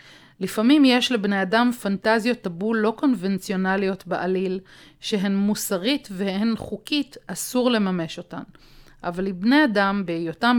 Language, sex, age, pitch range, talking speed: Hebrew, female, 30-49, 185-230 Hz, 115 wpm